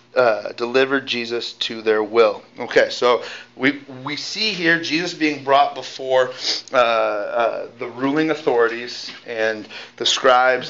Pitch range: 125-160 Hz